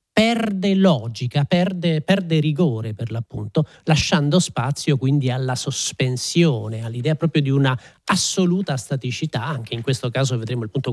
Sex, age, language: male, 40-59, Italian